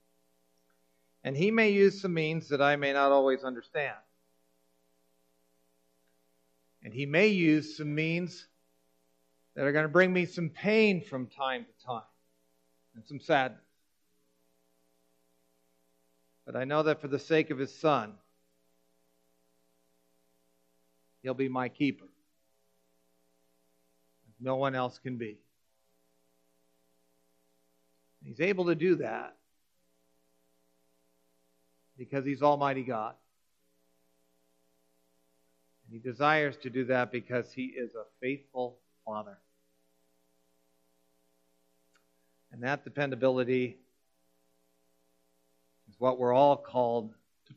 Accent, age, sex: American, 50-69, male